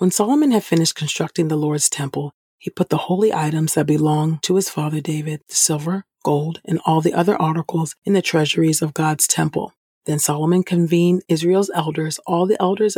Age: 40-59